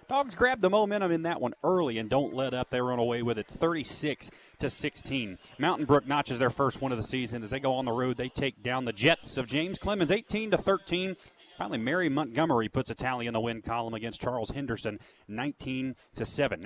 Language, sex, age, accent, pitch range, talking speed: English, male, 30-49, American, 115-150 Hz, 205 wpm